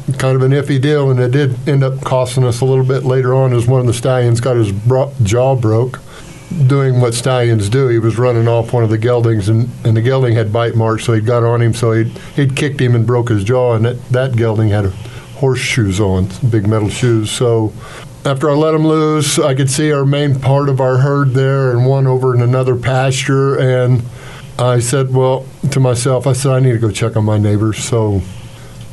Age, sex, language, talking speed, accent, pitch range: 50-69, male, English, 225 wpm, American, 115-135 Hz